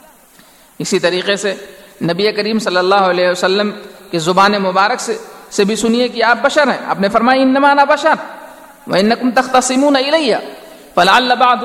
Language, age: Urdu, 50-69